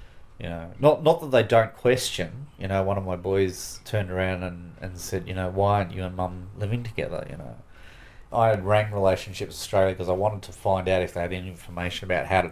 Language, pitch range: English, 90-105 Hz